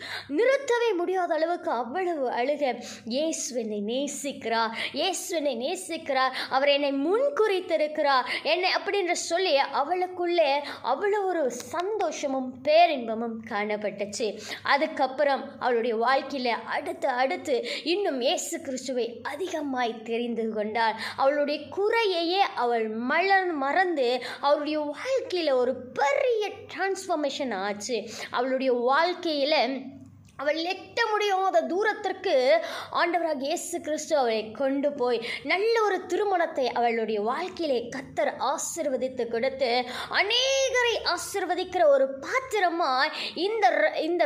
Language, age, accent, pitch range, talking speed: Tamil, 20-39, native, 260-365 Hz, 90 wpm